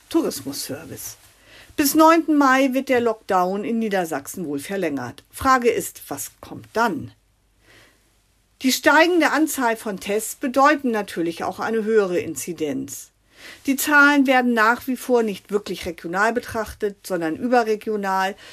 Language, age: German, 50-69